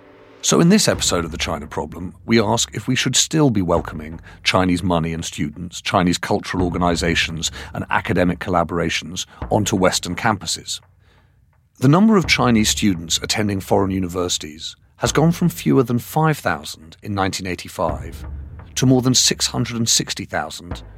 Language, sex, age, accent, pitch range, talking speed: English, male, 40-59, British, 85-115 Hz, 140 wpm